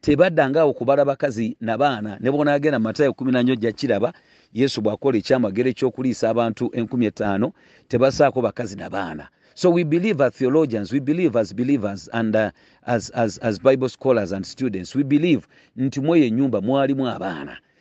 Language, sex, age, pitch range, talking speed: English, male, 40-59, 110-145 Hz, 160 wpm